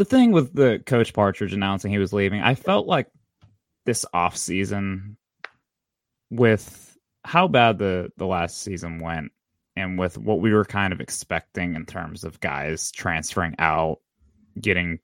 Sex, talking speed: male, 155 wpm